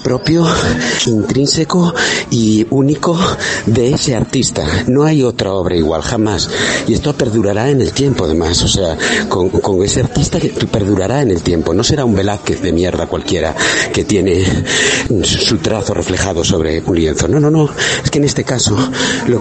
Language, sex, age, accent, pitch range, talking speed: Spanish, male, 60-79, Spanish, 100-140 Hz, 170 wpm